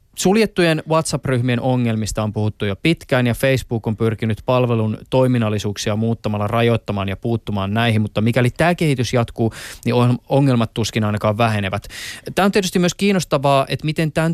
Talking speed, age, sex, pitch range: 150 wpm, 20-39, male, 110-130 Hz